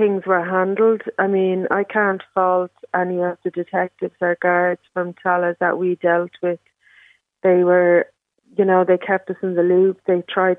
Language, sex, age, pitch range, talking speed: English, female, 30-49, 175-190 Hz, 180 wpm